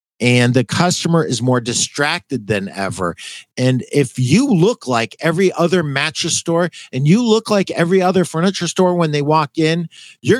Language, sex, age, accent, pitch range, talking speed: English, male, 50-69, American, 125-180 Hz, 175 wpm